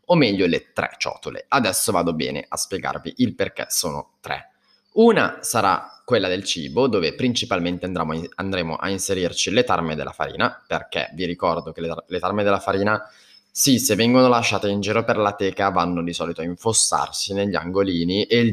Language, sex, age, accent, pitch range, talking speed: Italian, male, 20-39, native, 90-120 Hz, 175 wpm